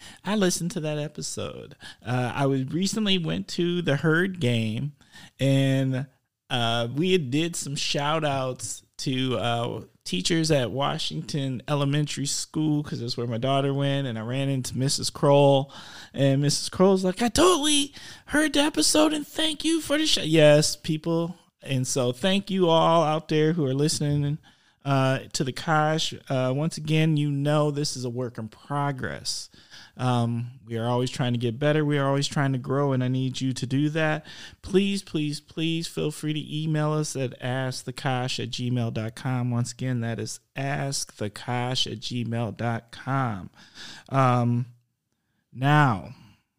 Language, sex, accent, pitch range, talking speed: English, male, American, 125-160 Hz, 160 wpm